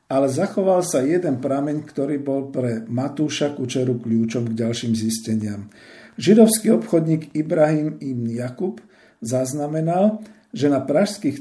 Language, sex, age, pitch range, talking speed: Slovak, male, 50-69, 120-155 Hz, 120 wpm